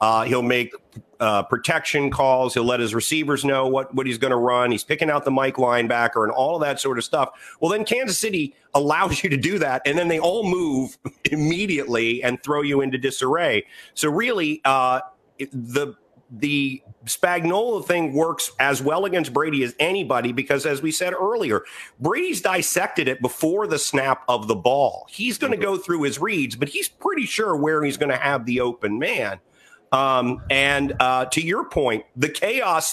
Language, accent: English, American